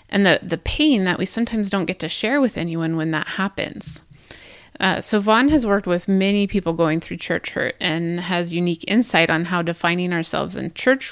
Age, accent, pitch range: 30-49, American, 165-205 Hz